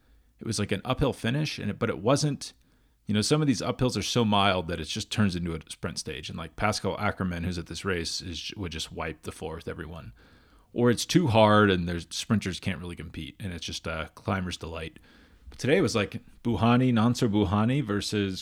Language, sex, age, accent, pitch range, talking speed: English, male, 30-49, American, 90-115 Hz, 225 wpm